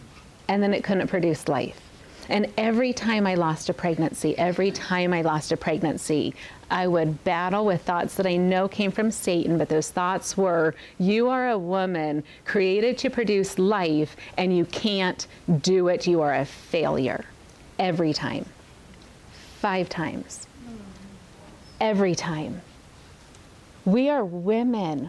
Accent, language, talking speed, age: American, English, 145 wpm, 30-49